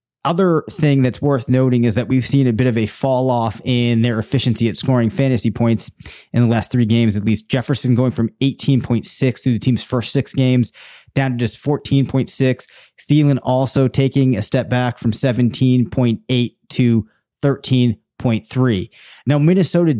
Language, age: English, 30-49